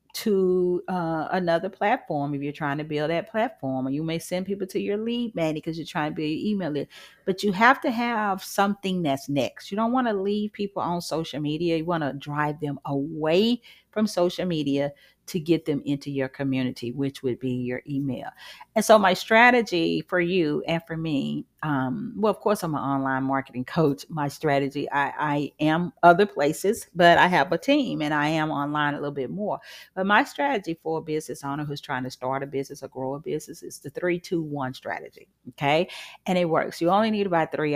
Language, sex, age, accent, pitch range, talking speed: English, female, 40-59, American, 150-205 Hz, 215 wpm